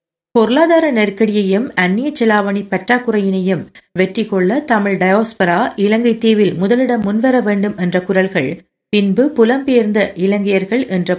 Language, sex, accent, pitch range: Tamil, female, native, 180-220 Hz